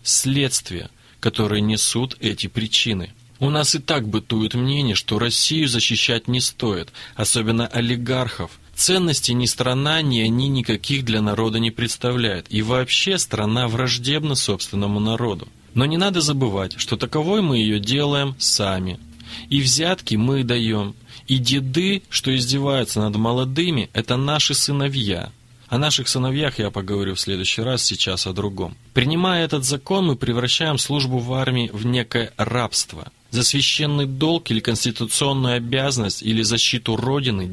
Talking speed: 140 wpm